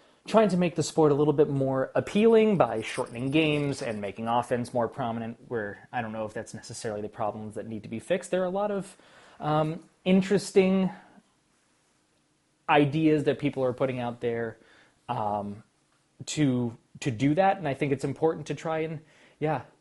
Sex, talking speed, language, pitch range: male, 180 wpm, English, 110-145 Hz